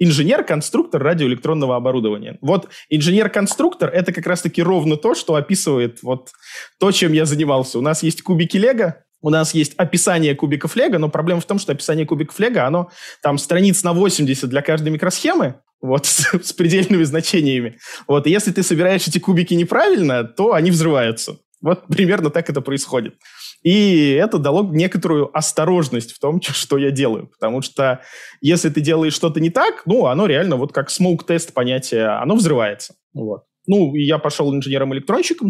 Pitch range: 140-180 Hz